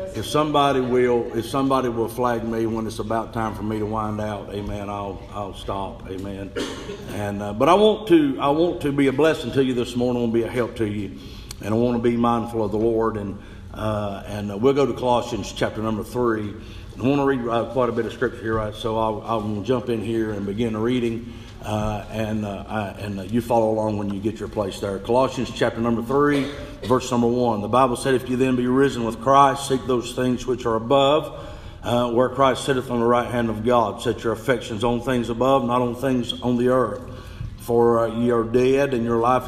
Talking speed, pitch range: 235 wpm, 110-125 Hz